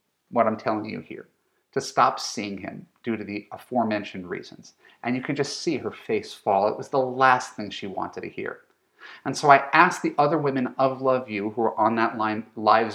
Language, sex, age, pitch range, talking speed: English, male, 30-49, 110-150 Hz, 215 wpm